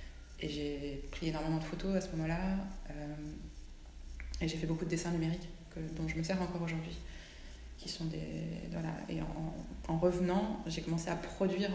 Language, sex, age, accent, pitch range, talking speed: French, female, 20-39, French, 150-180 Hz, 185 wpm